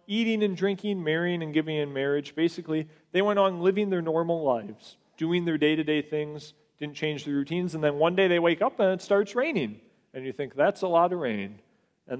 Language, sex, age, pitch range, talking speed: English, male, 40-59, 150-195 Hz, 215 wpm